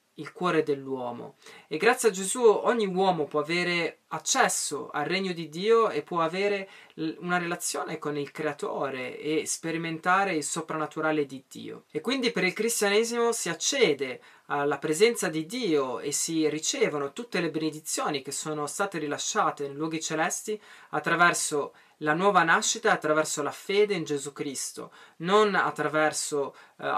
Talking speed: 155 wpm